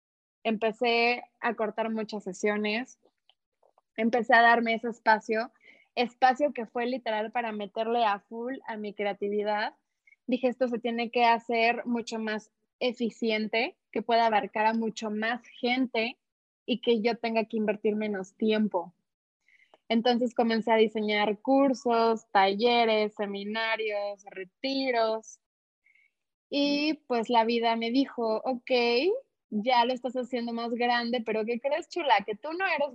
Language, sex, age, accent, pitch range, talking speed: Spanish, female, 20-39, Mexican, 220-255 Hz, 135 wpm